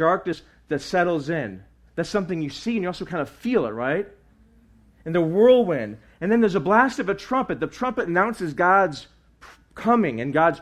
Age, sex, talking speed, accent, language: 40-59, male, 190 wpm, American, English